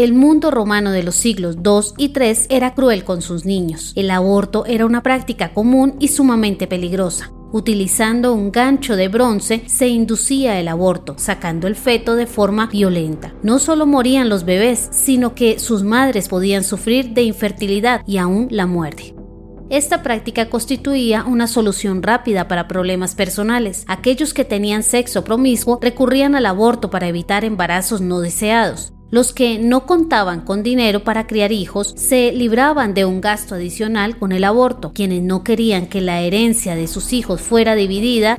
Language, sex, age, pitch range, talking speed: Spanish, female, 30-49, 190-245 Hz, 165 wpm